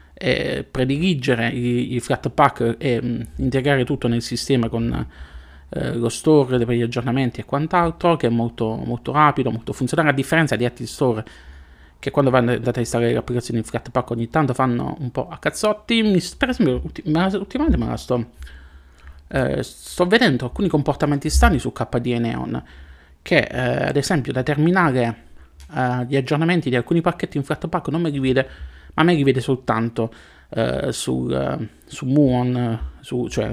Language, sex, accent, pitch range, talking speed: Italian, male, native, 115-145 Hz, 175 wpm